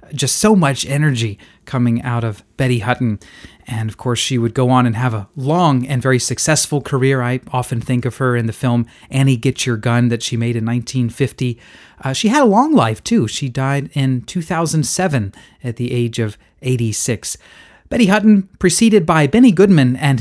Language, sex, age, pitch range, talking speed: English, male, 30-49, 120-160 Hz, 190 wpm